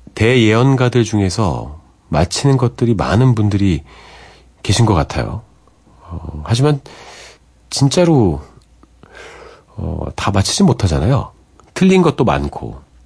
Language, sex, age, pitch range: Korean, male, 40-59, 80-115 Hz